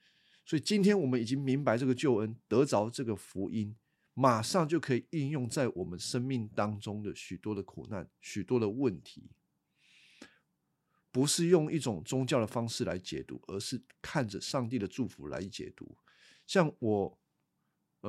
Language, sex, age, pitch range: Chinese, male, 50-69, 110-155 Hz